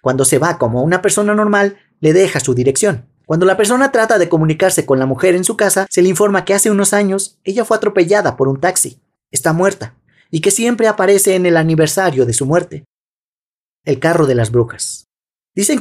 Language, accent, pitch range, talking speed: Spanish, Mexican, 160-205 Hz, 205 wpm